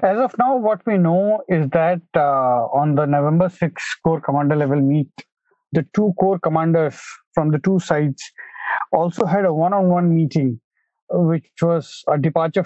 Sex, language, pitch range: male, English, 150-195 Hz